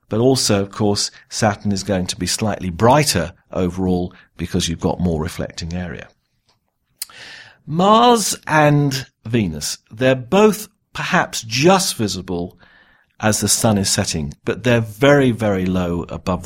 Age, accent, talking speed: 50-69, British, 135 wpm